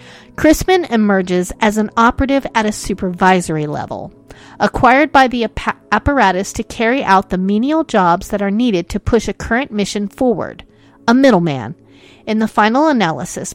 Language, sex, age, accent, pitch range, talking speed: English, female, 40-59, American, 180-235 Hz, 150 wpm